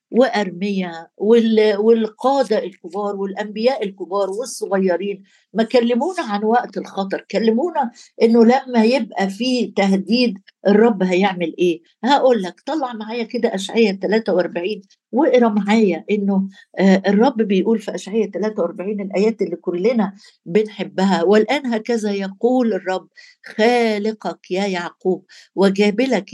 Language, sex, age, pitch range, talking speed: Arabic, female, 50-69, 190-235 Hz, 105 wpm